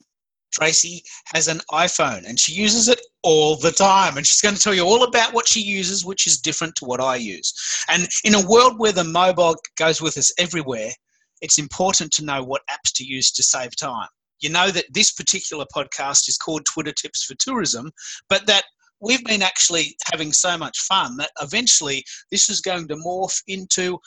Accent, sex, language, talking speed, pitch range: Australian, male, English, 200 wpm, 155-195 Hz